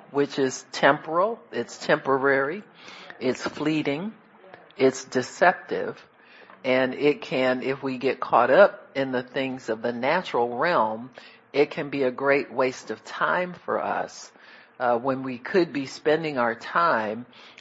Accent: American